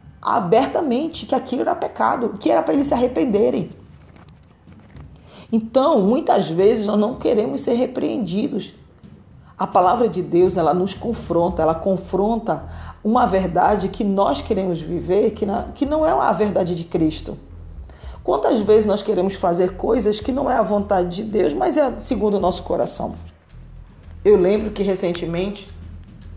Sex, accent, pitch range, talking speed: female, Brazilian, 170-225 Hz, 145 wpm